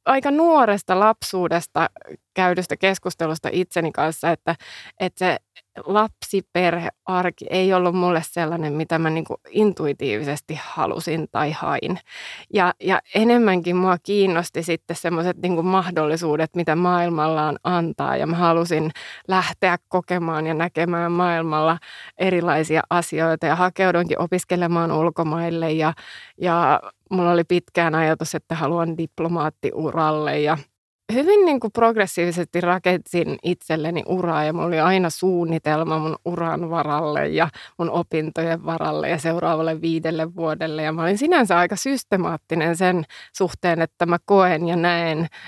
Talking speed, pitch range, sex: 120 wpm, 165-185 Hz, female